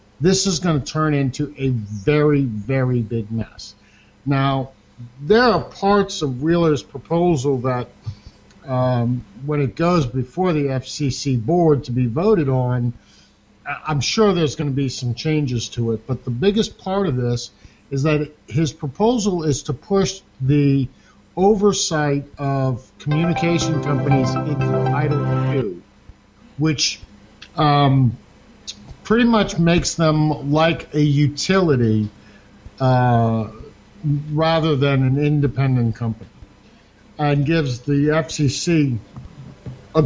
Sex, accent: male, American